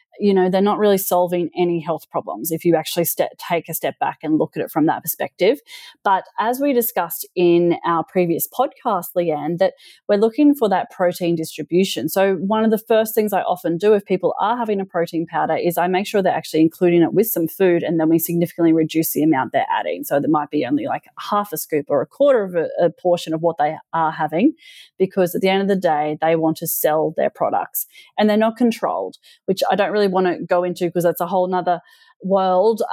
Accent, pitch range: Australian, 165-195 Hz